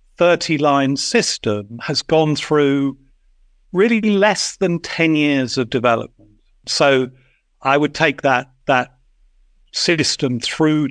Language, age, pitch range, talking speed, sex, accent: English, 50-69, 120-145 Hz, 110 wpm, male, British